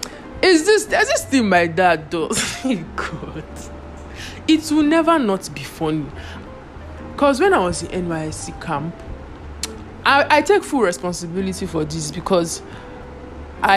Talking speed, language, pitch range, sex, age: 130 wpm, English, 160-220 Hz, male, 20-39